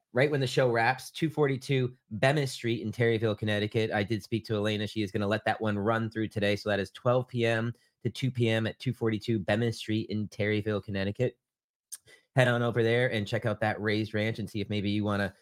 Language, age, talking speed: English, 30-49, 225 wpm